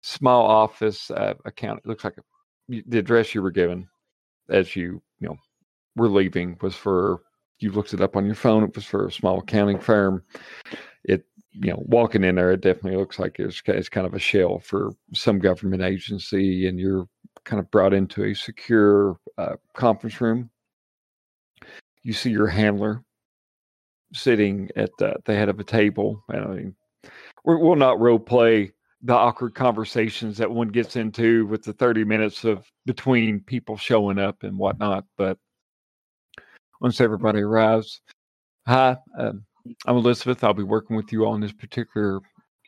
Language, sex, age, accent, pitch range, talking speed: English, male, 40-59, American, 100-120 Hz, 165 wpm